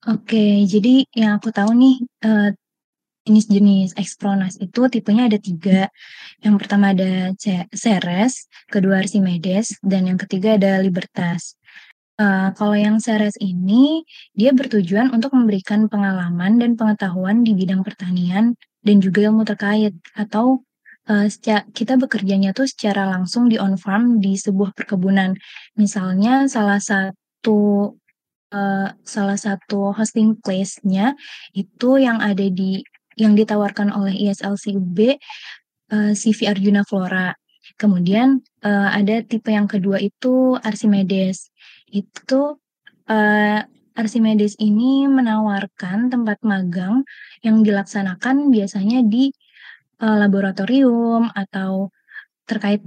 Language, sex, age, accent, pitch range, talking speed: Indonesian, female, 20-39, native, 195-230 Hz, 115 wpm